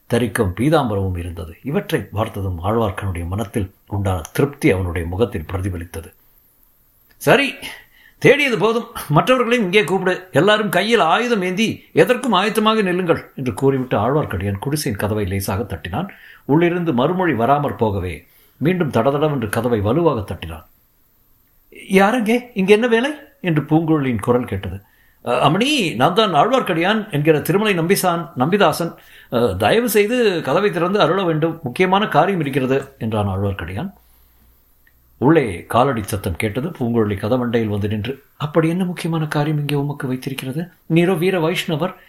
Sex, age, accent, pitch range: male, 60-79, native, 110-185 Hz